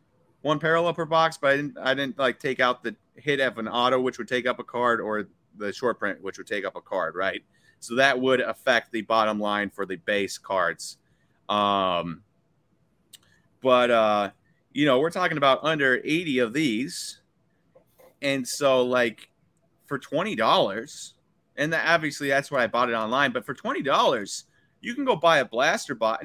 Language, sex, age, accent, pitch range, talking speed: English, male, 30-49, American, 120-150 Hz, 180 wpm